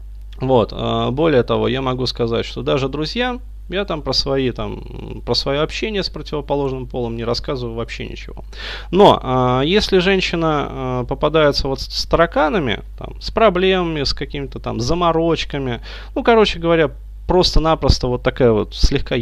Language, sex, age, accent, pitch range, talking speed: Russian, male, 20-39, native, 120-165 Hz, 145 wpm